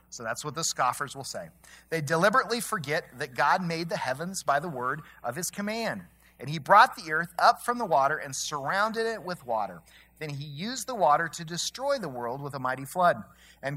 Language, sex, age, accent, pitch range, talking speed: English, male, 40-59, American, 125-190 Hz, 215 wpm